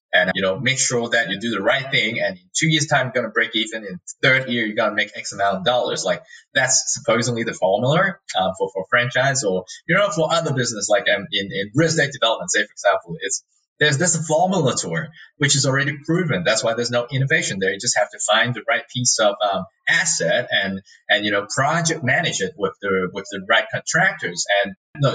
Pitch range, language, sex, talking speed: 115-160 Hz, English, male, 235 wpm